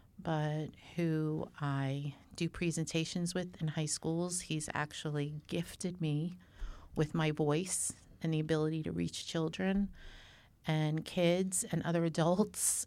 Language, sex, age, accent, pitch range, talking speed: English, female, 40-59, American, 145-165 Hz, 125 wpm